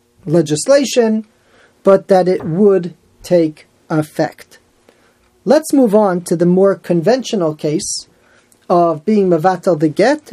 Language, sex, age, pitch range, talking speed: English, male, 40-59, 170-245 Hz, 115 wpm